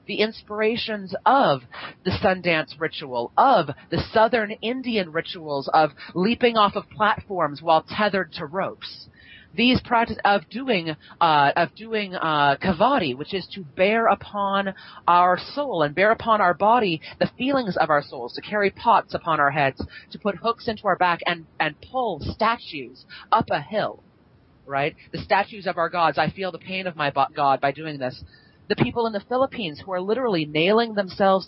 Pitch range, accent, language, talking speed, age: 160-220 Hz, American, English, 175 wpm, 30-49